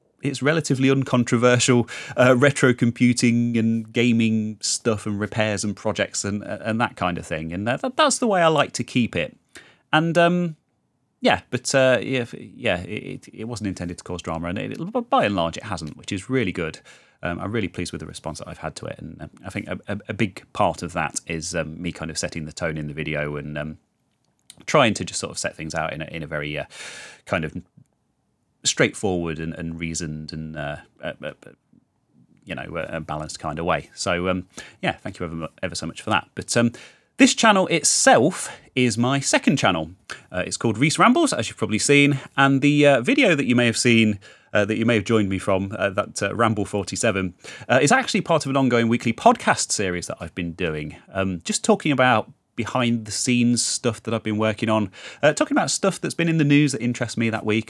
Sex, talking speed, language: male, 220 wpm, English